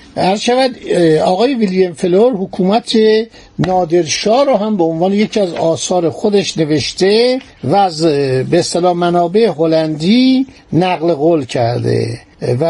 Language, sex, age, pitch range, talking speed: Persian, male, 60-79, 165-210 Hz, 125 wpm